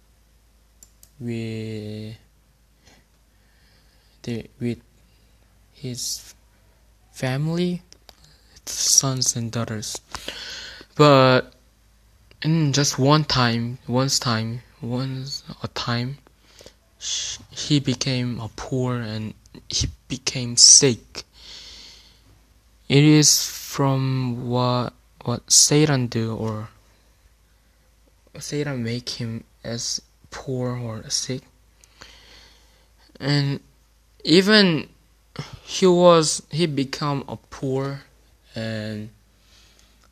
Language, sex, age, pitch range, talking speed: English, male, 20-39, 110-135 Hz, 75 wpm